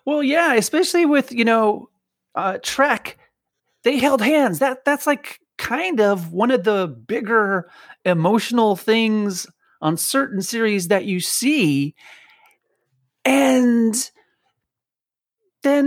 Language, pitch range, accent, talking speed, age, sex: English, 155-240 Hz, American, 115 wpm, 30-49, male